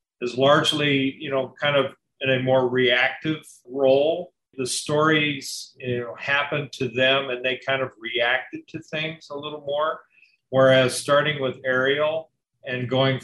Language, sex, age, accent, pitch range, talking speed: English, male, 50-69, American, 120-140 Hz, 155 wpm